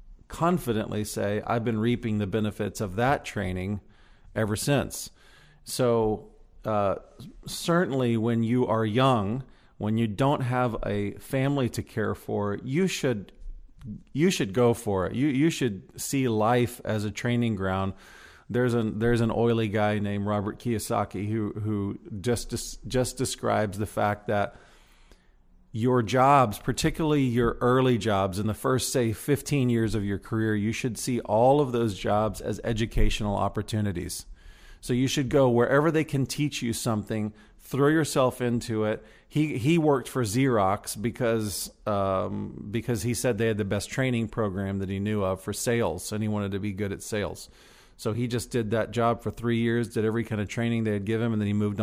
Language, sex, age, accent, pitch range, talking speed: English, male, 40-59, American, 105-125 Hz, 175 wpm